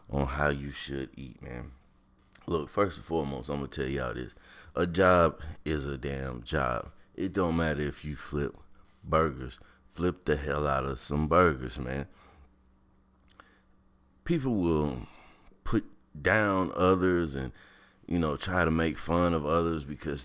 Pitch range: 70-90 Hz